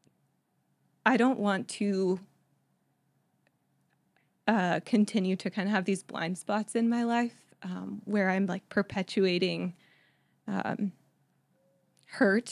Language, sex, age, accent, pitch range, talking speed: English, female, 20-39, American, 185-210 Hz, 110 wpm